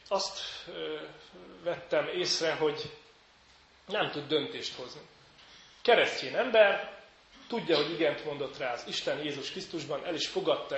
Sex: male